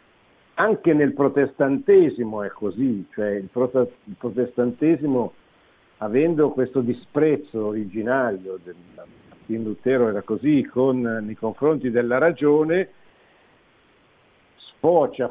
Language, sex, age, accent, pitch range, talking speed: Italian, male, 60-79, native, 105-140 Hz, 80 wpm